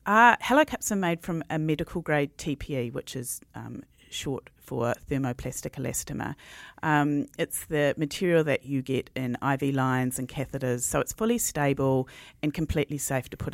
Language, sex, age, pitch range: English, female, 40-59, 125-150 Hz